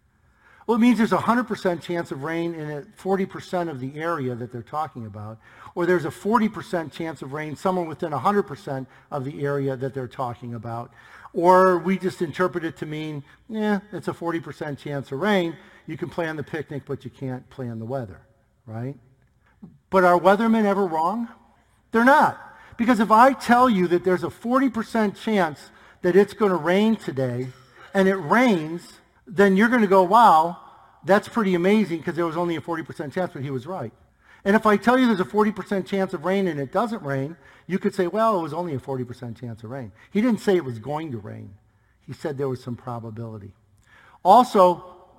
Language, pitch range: English, 135-190 Hz